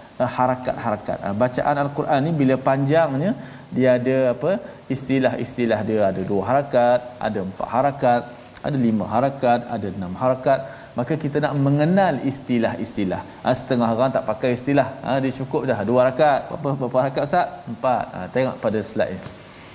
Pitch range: 110-140 Hz